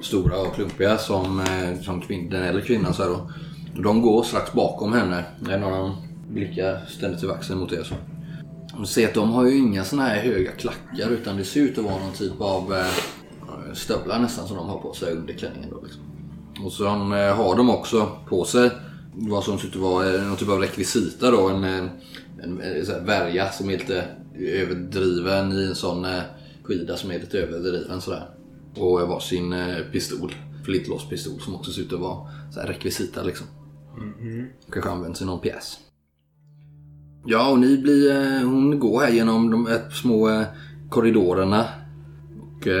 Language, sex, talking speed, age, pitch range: Swedish, male, 180 wpm, 20-39, 90-120 Hz